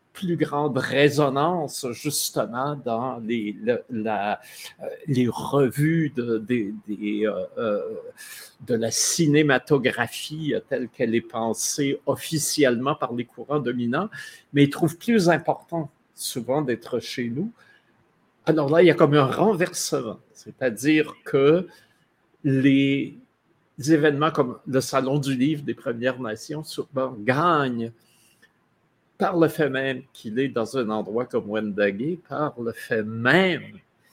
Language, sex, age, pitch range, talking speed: French, male, 50-69, 120-155 Hz, 130 wpm